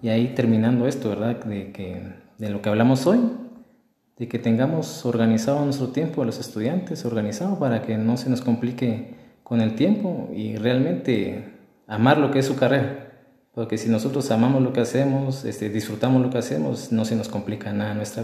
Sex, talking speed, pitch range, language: male, 190 wpm, 110-130 Hz, Spanish